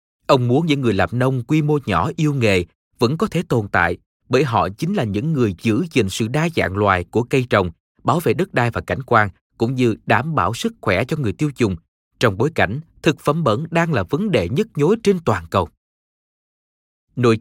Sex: male